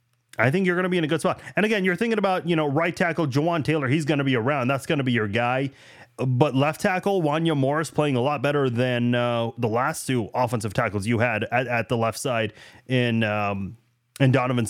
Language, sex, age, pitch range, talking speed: English, male, 30-49, 125-165 Hz, 240 wpm